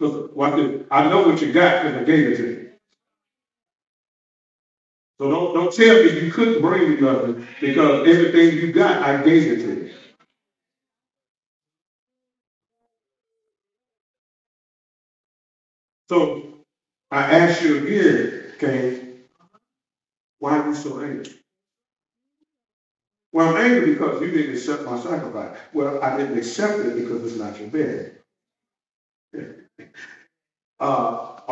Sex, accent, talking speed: male, American, 120 wpm